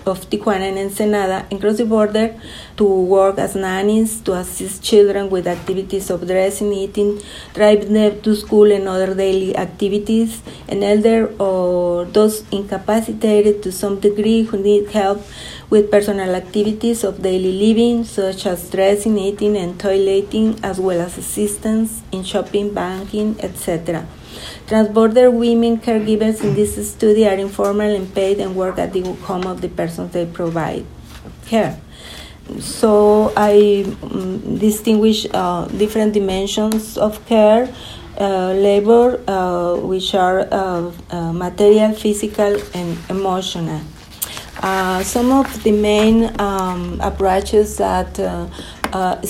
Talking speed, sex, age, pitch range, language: 135 wpm, female, 40-59, 185-215 Hz, English